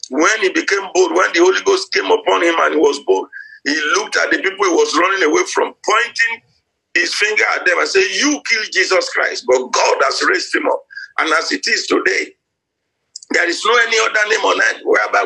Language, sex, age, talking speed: English, male, 50-69, 220 wpm